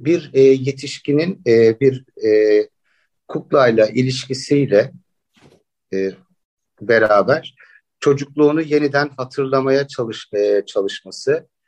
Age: 50-69